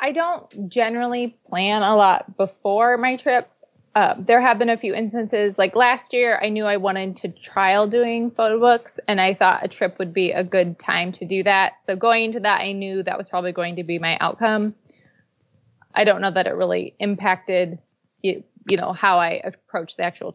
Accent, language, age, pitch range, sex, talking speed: American, English, 20-39, 185-215 Hz, female, 205 wpm